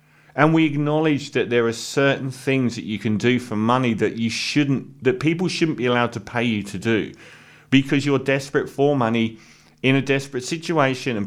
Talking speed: 195 wpm